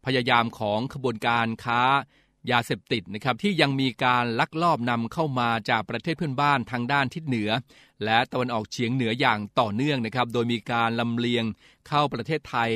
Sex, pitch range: male, 115-140 Hz